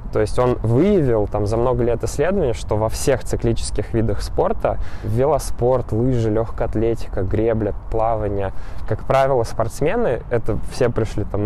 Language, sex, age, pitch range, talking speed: Russian, male, 20-39, 105-125 Hz, 145 wpm